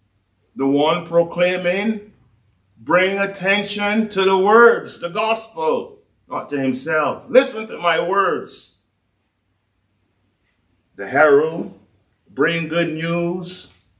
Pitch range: 110-180 Hz